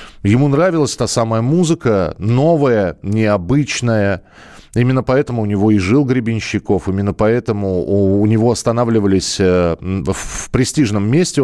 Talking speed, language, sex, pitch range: 120 wpm, Russian, male, 90-120 Hz